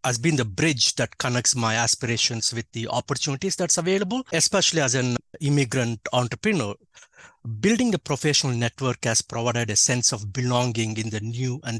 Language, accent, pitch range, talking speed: English, Indian, 115-145 Hz, 165 wpm